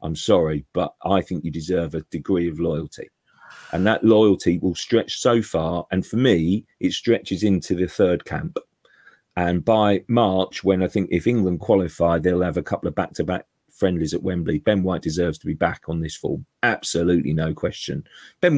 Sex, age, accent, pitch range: male, 40-59, British, 85-110 Hz